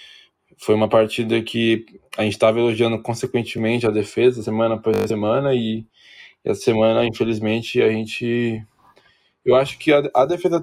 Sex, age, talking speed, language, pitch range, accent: male, 20-39, 140 wpm, Portuguese, 105-125 Hz, Brazilian